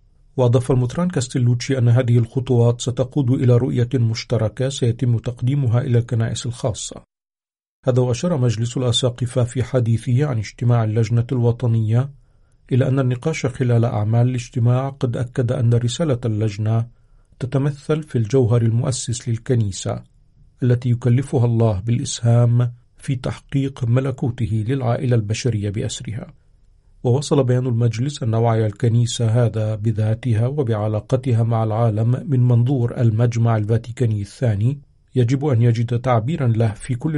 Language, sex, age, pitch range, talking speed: Arabic, male, 50-69, 115-130 Hz, 120 wpm